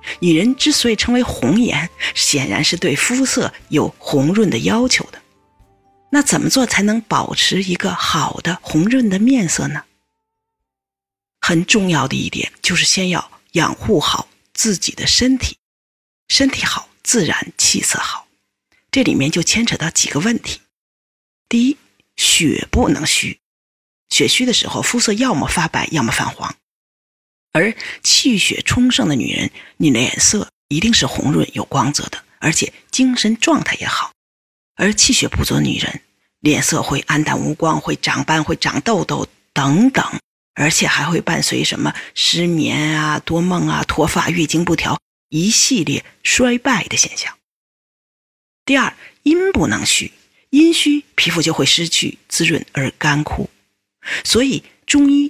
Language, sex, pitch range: Chinese, female, 150-255 Hz